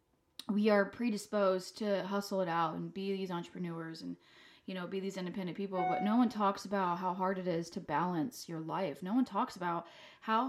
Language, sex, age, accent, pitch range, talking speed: English, female, 20-39, American, 180-215 Hz, 205 wpm